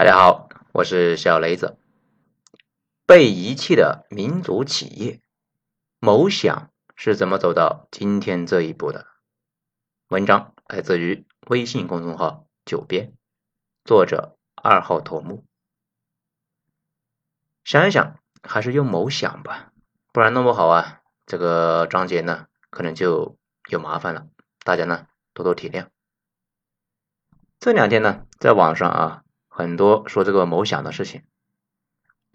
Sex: male